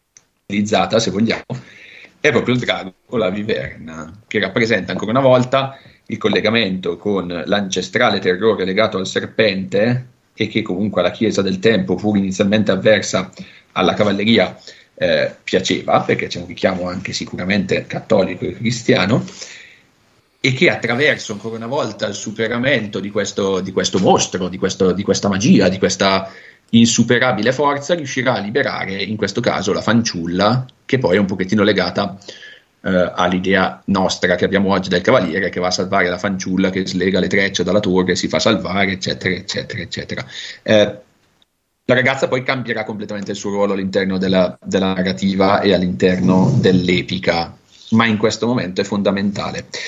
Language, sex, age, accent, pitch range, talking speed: Italian, male, 40-59, native, 95-110 Hz, 155 wpm